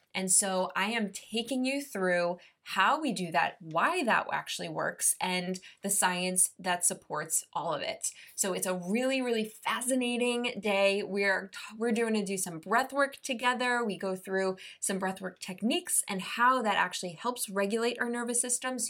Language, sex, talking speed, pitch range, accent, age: English, female, 180 wpm, 185-235 Hz, American, 20-39